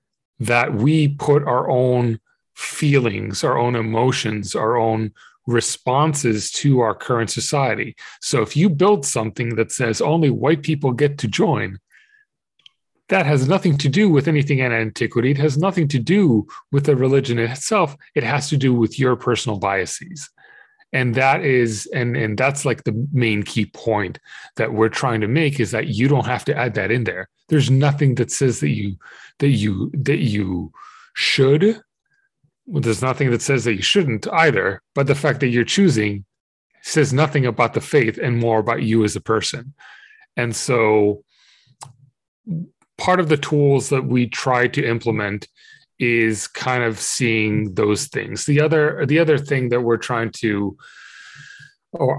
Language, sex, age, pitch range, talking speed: English, male, 30-49, 115-145 Hz, 170 wpm